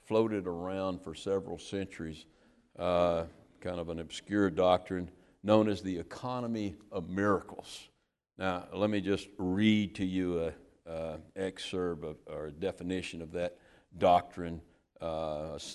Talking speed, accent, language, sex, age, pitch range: 135 wpm, American, English, male, 60-79, 90-125 Hz